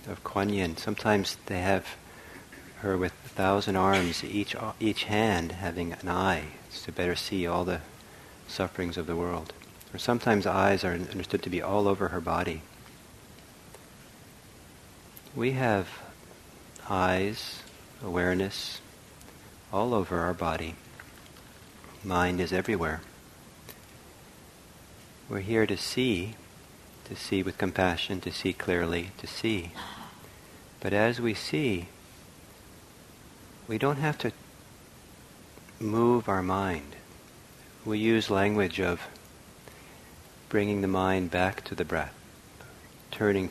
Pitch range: 90-110 Hz